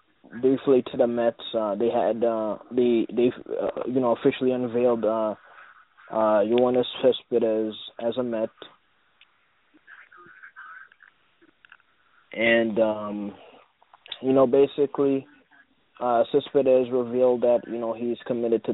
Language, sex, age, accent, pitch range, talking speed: English, male, 20-39, American, 115-130 Hz, 115 wpm